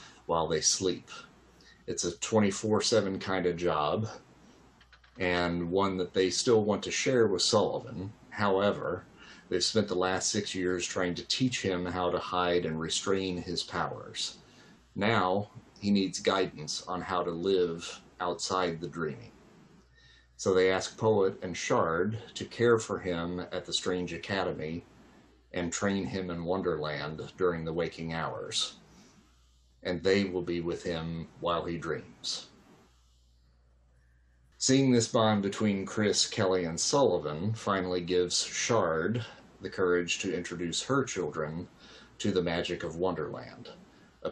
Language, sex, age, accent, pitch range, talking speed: English, male, 40-59, American, 85-95 Hz, 140 wpm